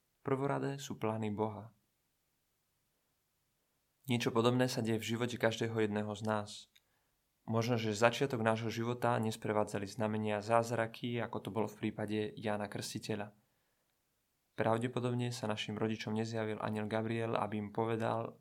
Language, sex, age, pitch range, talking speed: Czech, male, 20-39, 110-130 Hz, 125 wpm